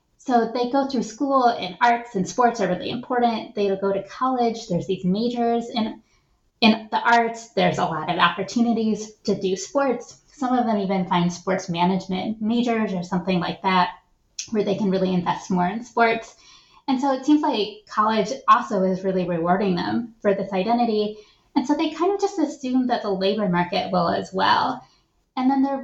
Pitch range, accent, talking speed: 190-245 Hz, American, 195 wpm